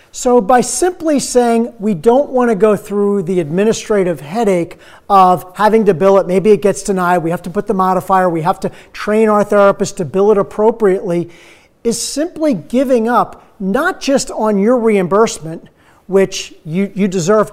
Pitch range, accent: 180-230 Hz, American